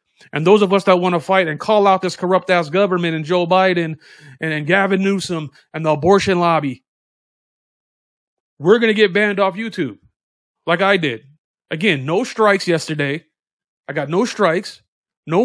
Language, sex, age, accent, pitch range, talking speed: English, male, 30-49, American, 160-205 Hz, 170 wpm